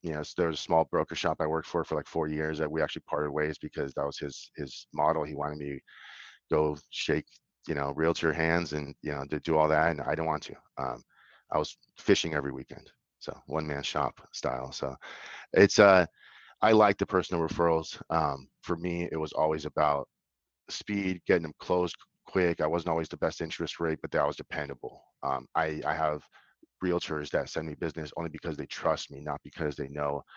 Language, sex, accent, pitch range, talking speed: English, male, American, 70-80 Hz, 215 wpm